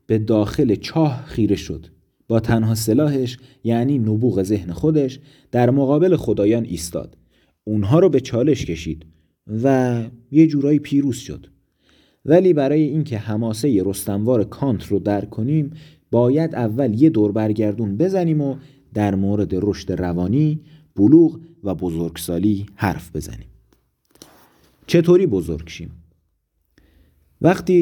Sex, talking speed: male, 115 wpm